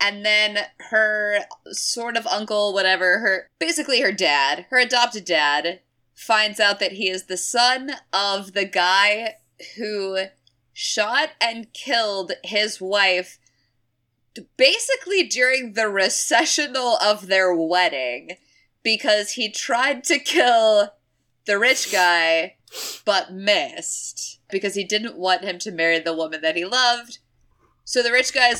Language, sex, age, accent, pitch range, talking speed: English, female, 20-39, American, 180-250 Hz, 135 wpm